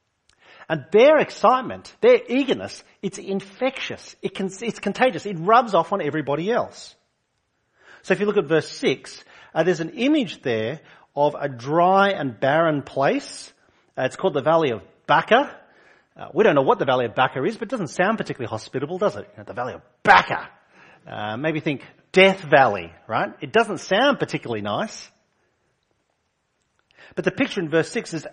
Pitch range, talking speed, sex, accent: 135-200 Hz, 180 wpm, male, Australian